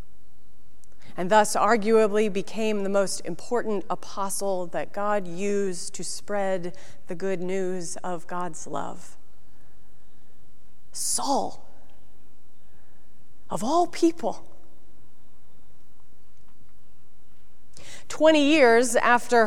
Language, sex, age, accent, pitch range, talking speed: English, female, 30-49, American, 200-250 Hz, 80 wpm